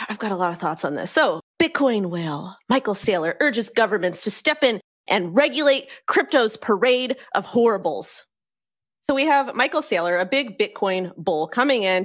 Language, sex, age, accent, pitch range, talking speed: English, female, 30-49, American, 170-235 Hz, 175 wpm